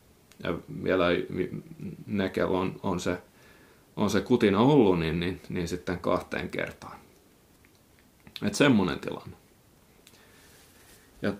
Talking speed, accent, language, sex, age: 95 wpm, native, Finnish, male, 30-49